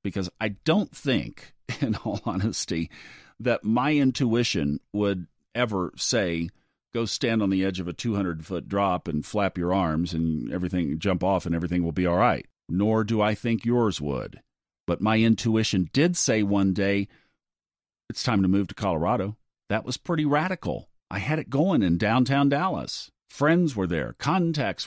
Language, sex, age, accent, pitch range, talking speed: English, male, 50-69, American, 95-135 Hz, 170 wpm